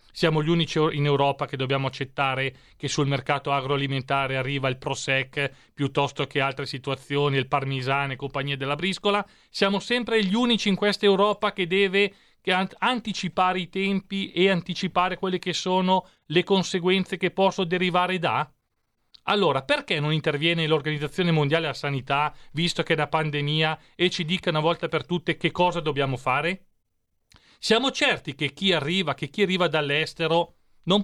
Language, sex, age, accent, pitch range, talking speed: Italian, male, 30-49, native, 140-185 Hz, 155 wpm